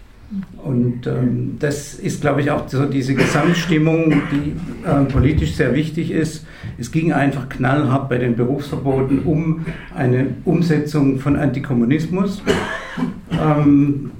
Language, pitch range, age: German, 135-160 Hz, 60-79